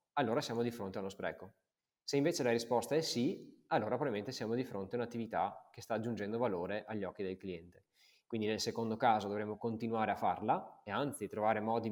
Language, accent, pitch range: Italian, native, 100-120 Hz